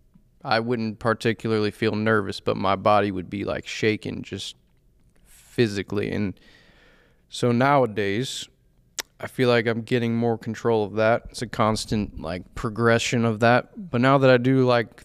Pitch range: 110-125 Hz